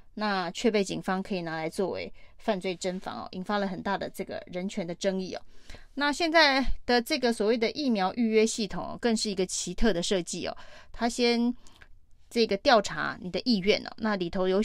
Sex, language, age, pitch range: female, Chinese, 30-49, 190-230 Hz